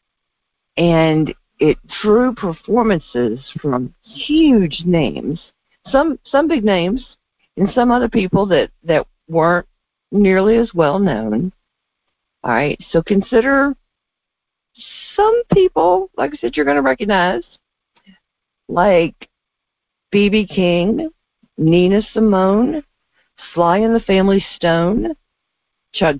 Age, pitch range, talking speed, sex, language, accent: 50-69, 155-230 Hz, 105 wpm, female, English, American